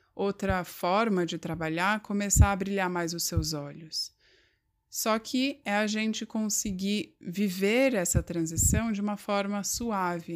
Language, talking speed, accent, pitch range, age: Portuguese, 140 wpm, Brazilian, 165-205 Hz, 20-39